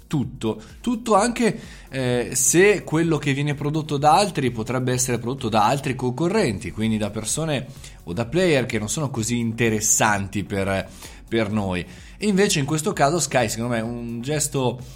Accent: native